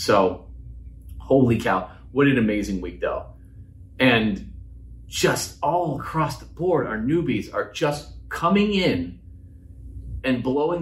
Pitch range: 90-140 Hz